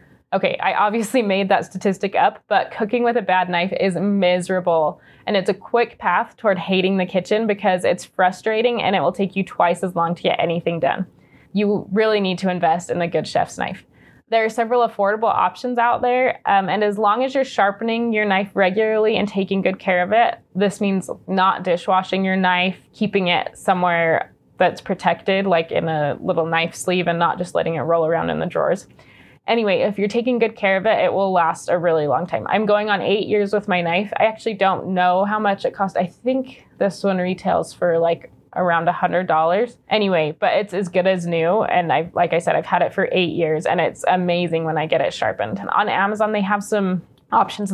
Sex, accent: female, American